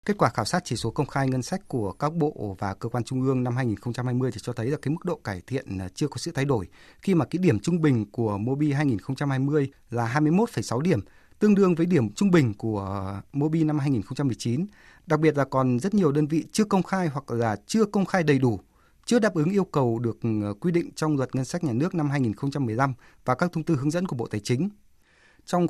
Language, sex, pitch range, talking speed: Vietnamese, male, 125-165 Hz, 235 wpm